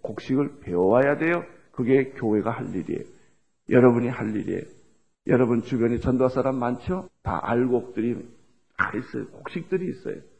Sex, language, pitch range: male, Korean, 125-165 Hz